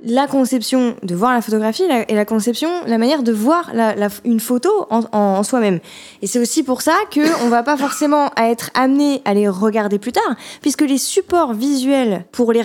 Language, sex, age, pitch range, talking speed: French, female, 20-39, 205-260 Hz, 215 wpm